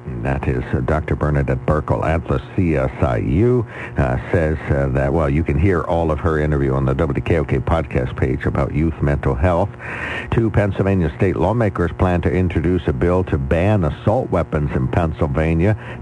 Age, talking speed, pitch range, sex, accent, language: 60-79, 165 wpm, 75-95 Hz, male, American, English